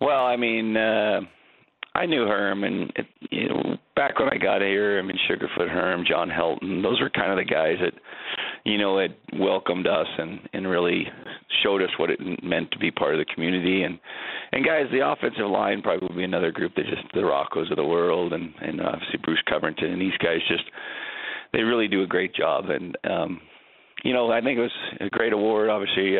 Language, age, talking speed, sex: English, 40-59, 215 wpm, male